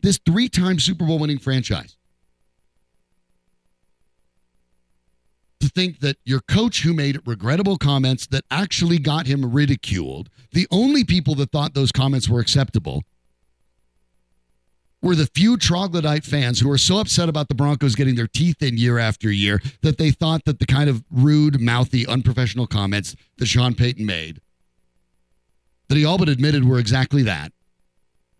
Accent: American